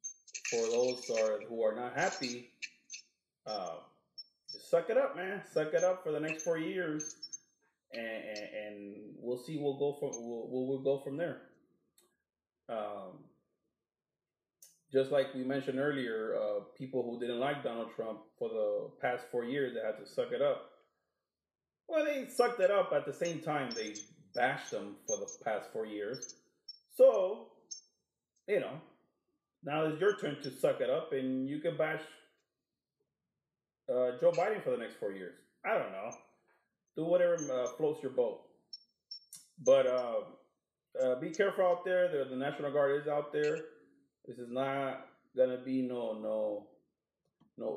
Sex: male